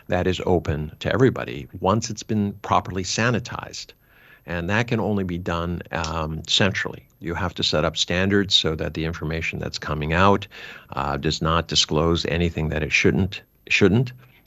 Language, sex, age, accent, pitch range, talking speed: English, male, 60-79, American, 75-95 Hz, 165 wpm